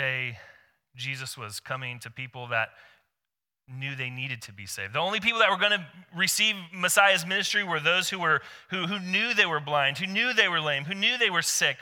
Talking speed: 210 wpm